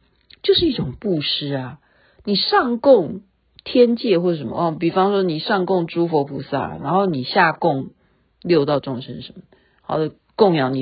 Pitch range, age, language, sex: 140-220 Hz, 50-69, Chinese, female